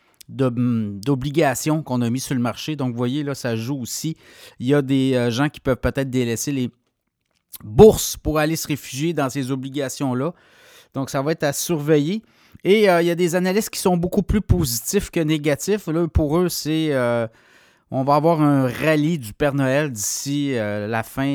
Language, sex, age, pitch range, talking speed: French, male, 30-49, 125-155 Hz, 195 wpm